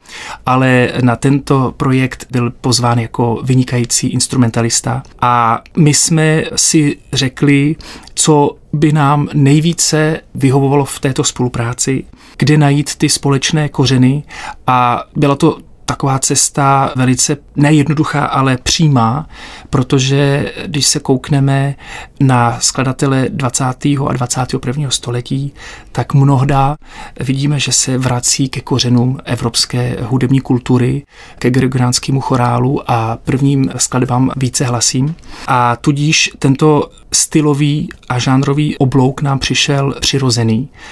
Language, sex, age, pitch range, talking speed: Czech, male, 40-59, 125-145 Hz, 110 wpm